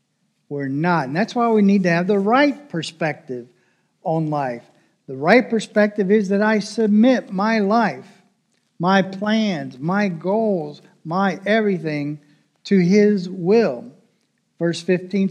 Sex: male